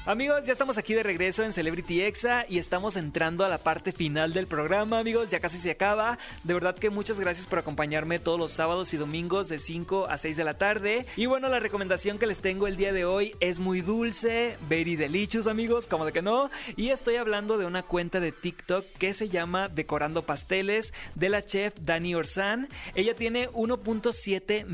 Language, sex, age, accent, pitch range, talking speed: Spanish, male, 30-49, Mexican, 165-210 Hz, 205 wpm